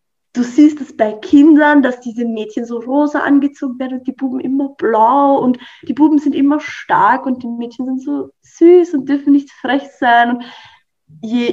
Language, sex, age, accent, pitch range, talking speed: English, female, 20-39, German, 215-275 Hz, 180 wpm